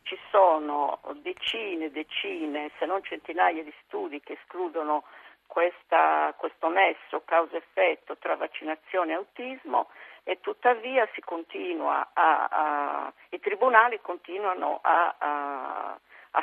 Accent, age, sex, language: native, 50-69, female, Italian